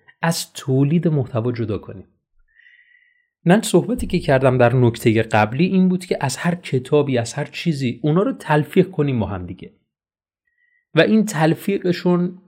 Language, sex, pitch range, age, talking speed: Persian, male, 115-175 Hz, 30-49, 150 wpm